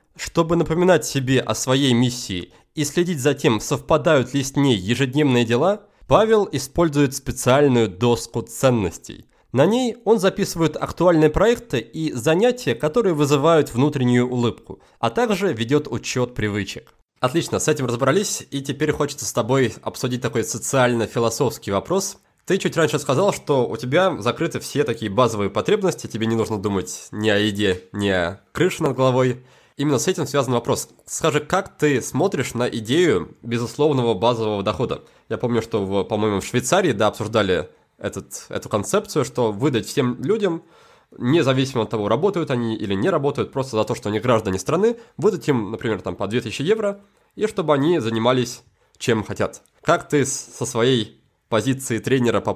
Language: Russian